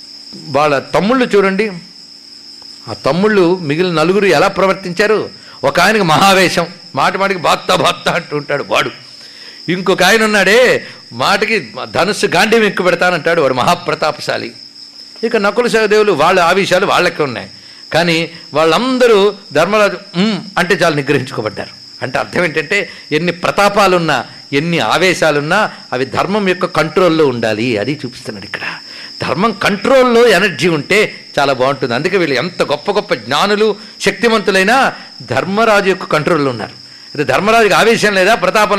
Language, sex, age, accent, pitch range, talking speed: Telugu, male, 50-69, native, 150-205 Hz, 120 wpm